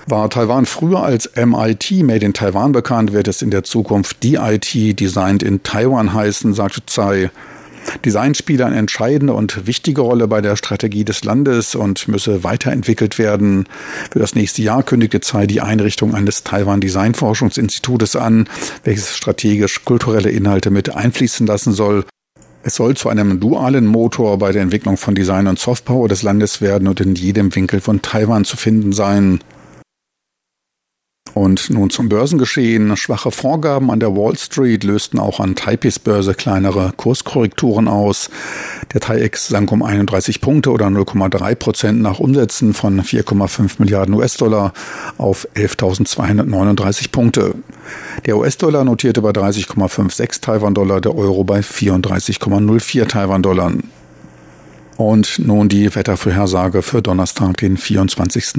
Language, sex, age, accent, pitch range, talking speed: German, male, 40-59, German, 100-115 Hz, 140 wpm